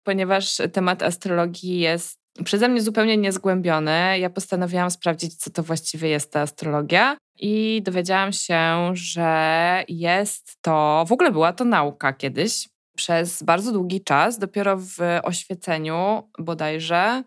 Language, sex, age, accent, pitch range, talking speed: Polish, female, 20-39, native, 160-190 Hz, 130 wpm